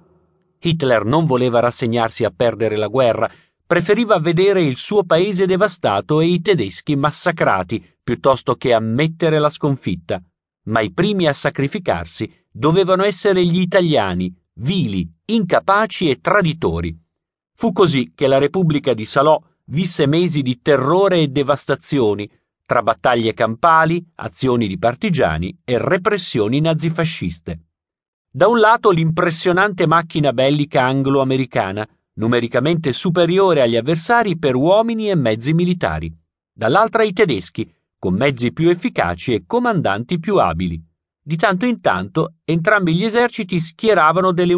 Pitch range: 115-180 Hz